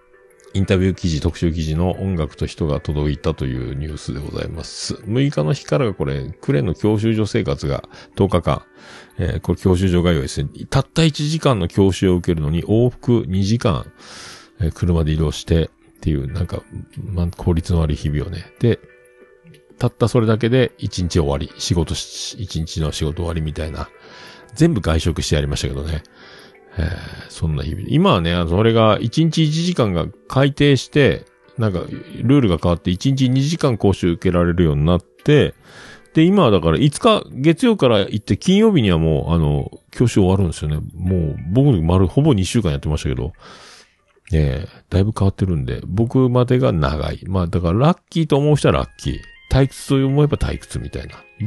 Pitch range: 80-125 Hz